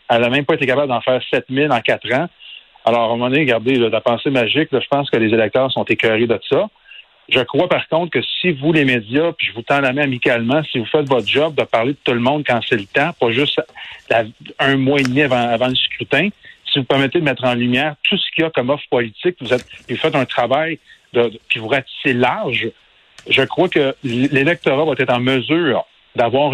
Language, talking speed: French, 235 wpm